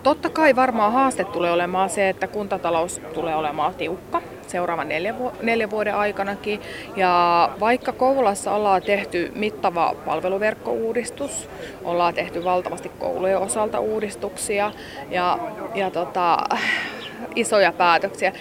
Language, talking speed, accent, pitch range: Finnish, 115 wpm, native, 180-230 Hz